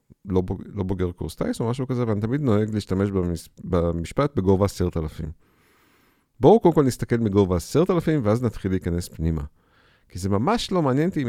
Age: 50-69